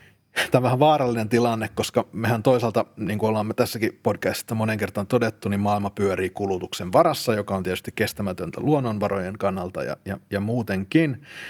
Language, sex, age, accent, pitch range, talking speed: Finnish, male, 30-49, native, 100-120 Hz, 165 wpm